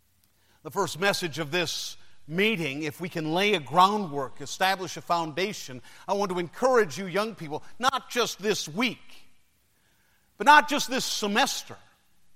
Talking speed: 150 wpm